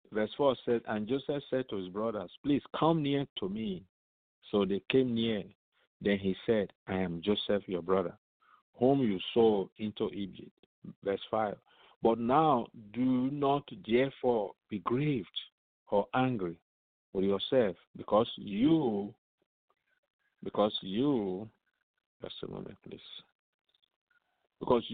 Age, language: 50-69, English